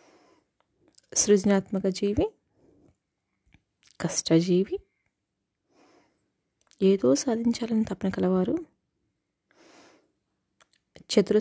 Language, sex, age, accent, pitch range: Telugu, female, 20-39, native, 190-245 Hz